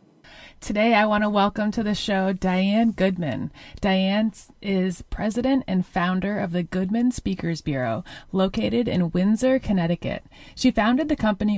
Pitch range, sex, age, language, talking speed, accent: 175-230 Hz, female, 30-49, English, 145 wpm, American